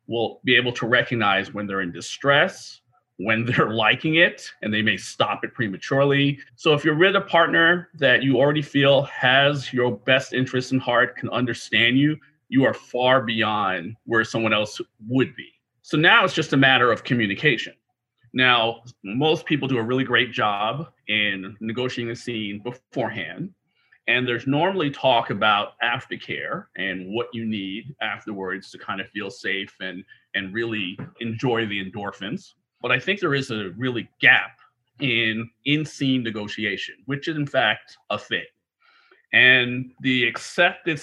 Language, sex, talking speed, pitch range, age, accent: English, male, 165 wpm, 110-135 Hz, 40-59, American